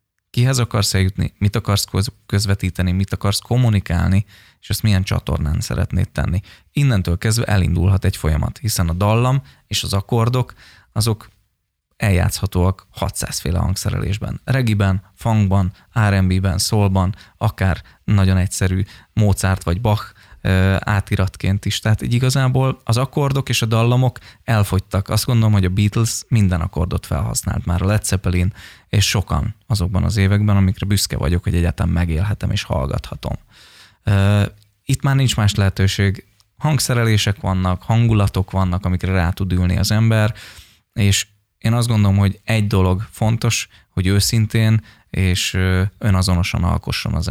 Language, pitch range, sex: Hungarian, 95-110 Hz, male